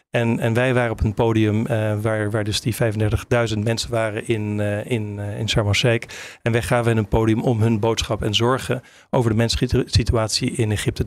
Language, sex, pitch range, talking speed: Dutch, male, 110-130 Hz, 190 wpm